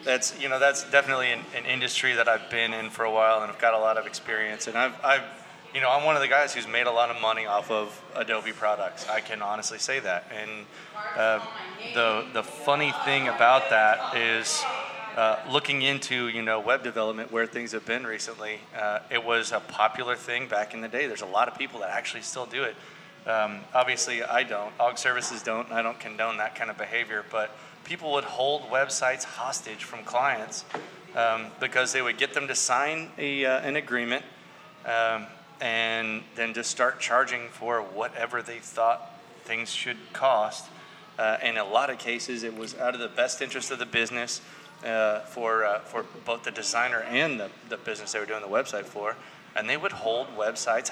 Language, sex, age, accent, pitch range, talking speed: English, male, 30-49, American, 110-140 Hz, 205 wpm